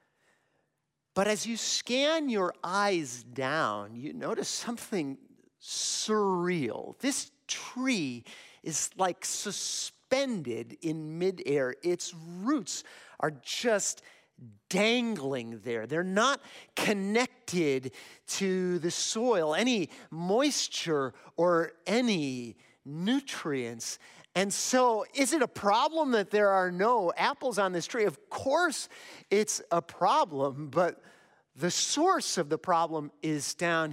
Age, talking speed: 40-59, 110 wpm